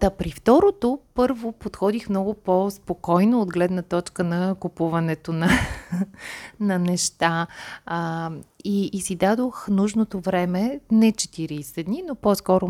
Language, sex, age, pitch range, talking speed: Bulgarian, female, 30-49, 160-195 Hz, 130 wpm